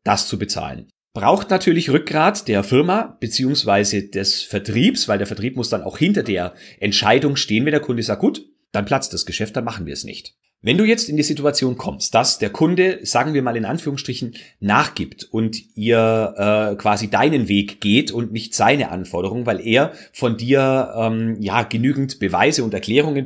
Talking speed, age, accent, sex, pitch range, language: 185 wpm, 40-59, German, male, 105-145 Hz, German